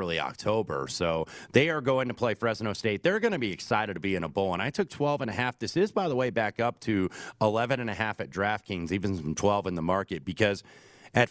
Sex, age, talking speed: male, 30-49, 260 wpm